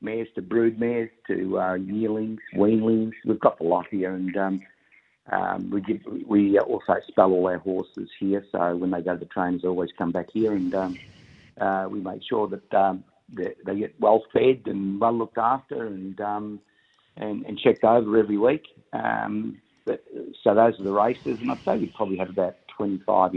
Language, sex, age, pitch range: English, male, 50-69, 95-110 Hz